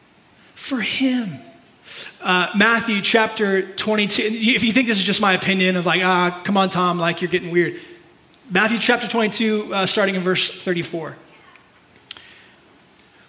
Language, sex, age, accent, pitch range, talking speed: English, male, 30-49, American, 170-220 Hz, 145 wpm